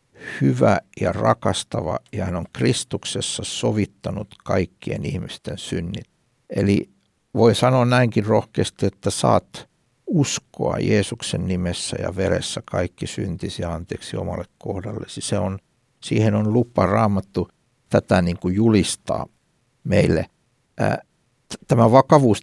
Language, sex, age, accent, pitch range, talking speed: Finnish, male, 60-79, native, 100-125 Hz, 110 wpm